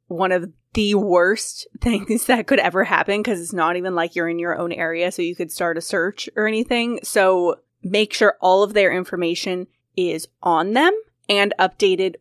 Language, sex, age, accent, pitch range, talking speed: English, female, 20-39, American, 175-215 Hz, 190 wpm